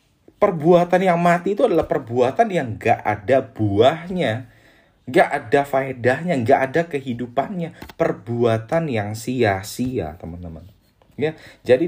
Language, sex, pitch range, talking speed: Indonesian, male, 110-170 Hz, 110 wpm